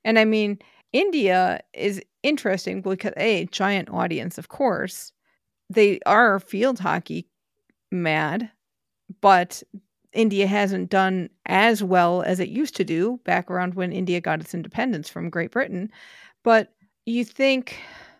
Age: 40-59